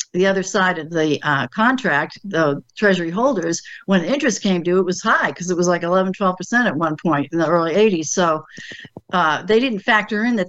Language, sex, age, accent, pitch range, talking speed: English, female, 60-79, American, 165-205 Hz, 215 wpm